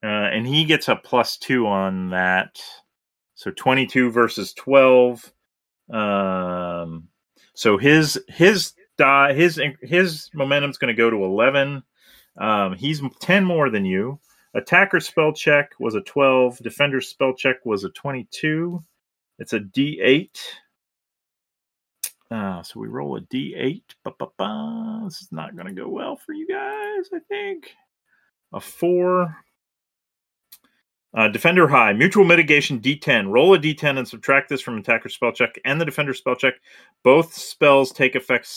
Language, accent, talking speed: English, American, 150 wpm